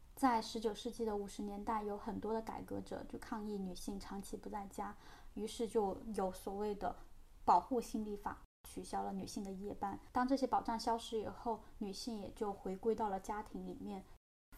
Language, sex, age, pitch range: Chinese, female, 20-39, 205-235 Hz